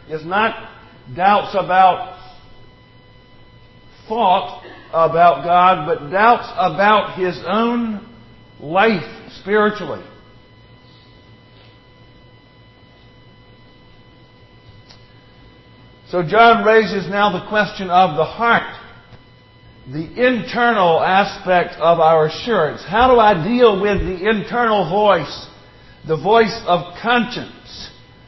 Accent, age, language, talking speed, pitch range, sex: American, 50-69, English, 85 wpm, 125-205 Hz, male